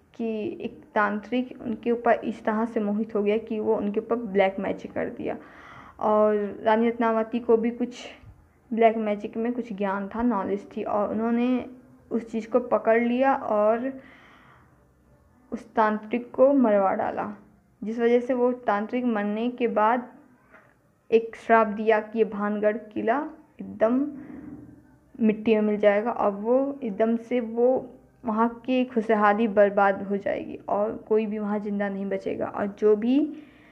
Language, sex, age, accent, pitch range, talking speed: Hindi, female, 20-39, native, 210-240 Hz, 155 wpm